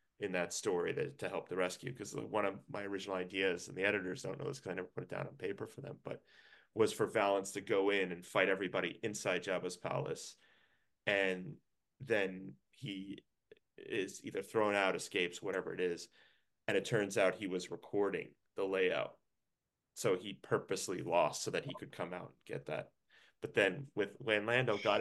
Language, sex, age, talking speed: English, male, 30-49, 200 wpm